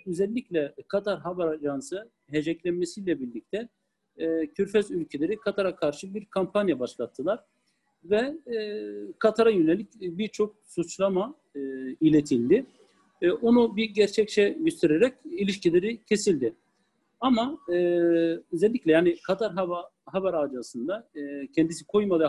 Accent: native